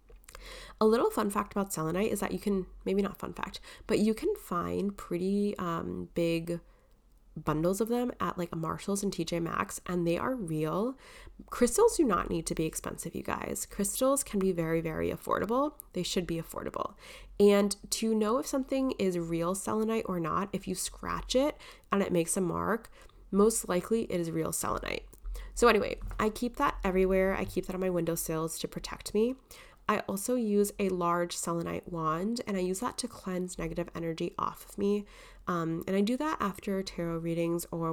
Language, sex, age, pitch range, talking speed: English, female, 20-39, 170-220 Hz, 190 wpm